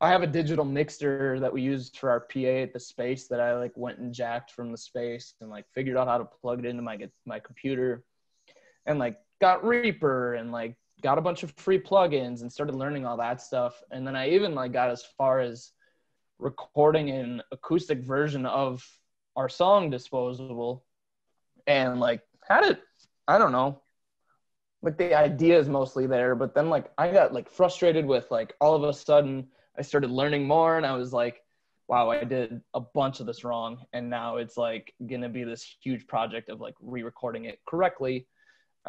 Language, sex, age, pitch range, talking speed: English, male, 20-39, 120-145 Hz, 195 wpm